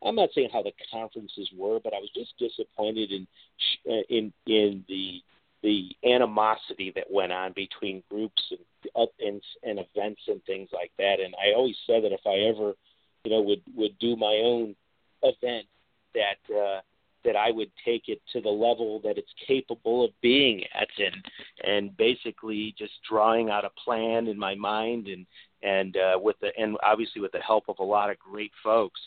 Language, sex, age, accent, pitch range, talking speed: English, male, 50-69, American, 100-125 Hz, 190 wpm